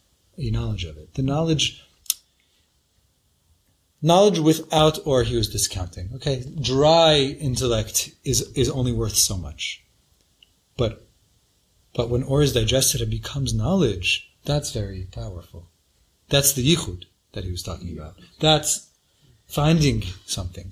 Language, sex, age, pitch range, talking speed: English, male, 30-49, 90-130 Hz, 125 wpm